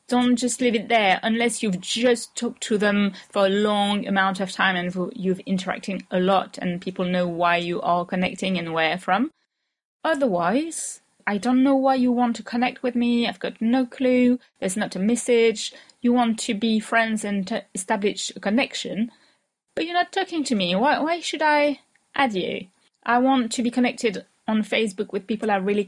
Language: English